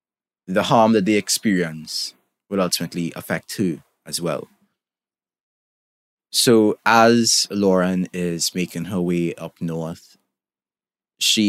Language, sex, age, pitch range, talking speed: English, male, 20-39, 85-100 Hz, 110 wpm